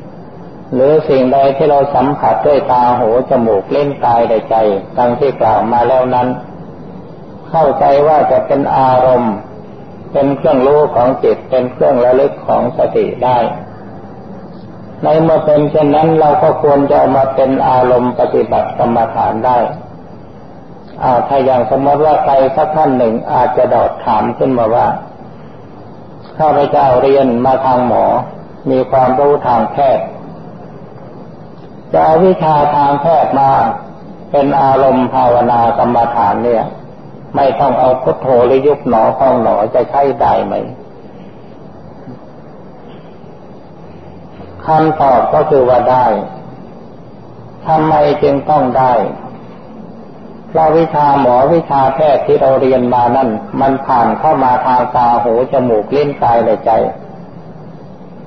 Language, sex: Thai, male